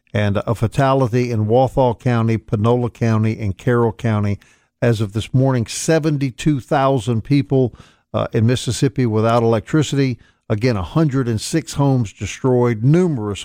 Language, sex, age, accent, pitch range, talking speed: English, male, 50-69, American, 110-130 Hz, 140 wpm